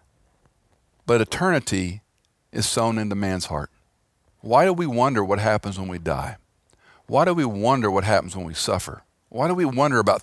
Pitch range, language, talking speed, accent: 95-115 Hz, English, 175 wpm, American